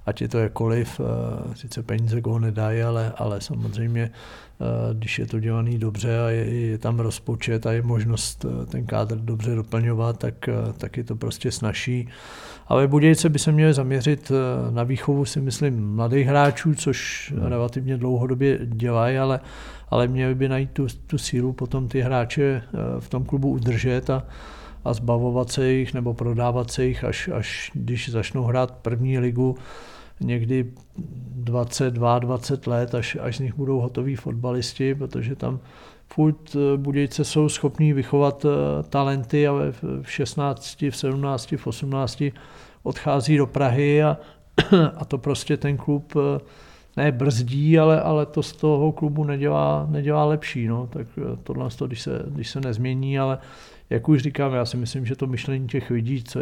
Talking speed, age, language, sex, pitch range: 155 wpm, 50-69, Czech, male, 115-140 Hz